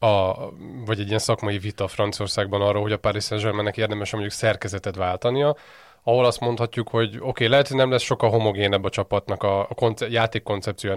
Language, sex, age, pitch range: Hungarian, male, 20-39, 105-130 Hz